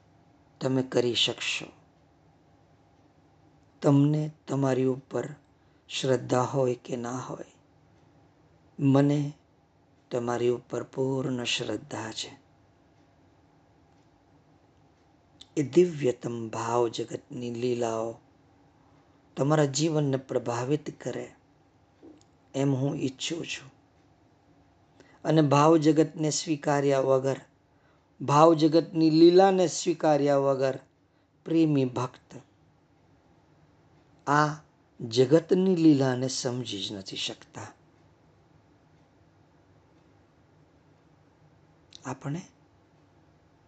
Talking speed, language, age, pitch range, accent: 60 wpm, Gujarati, 50-69, 120-150 Hz, native